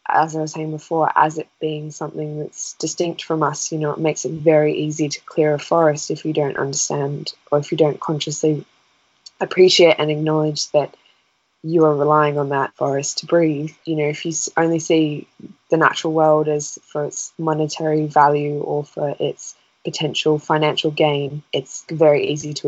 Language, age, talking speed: English, 10-29, 185 wpm